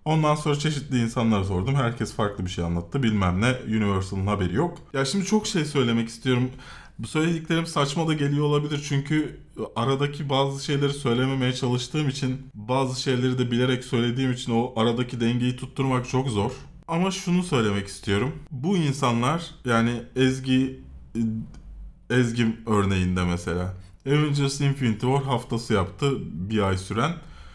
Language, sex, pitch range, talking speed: Turkish, male, 115-150 Hz, 140 wpm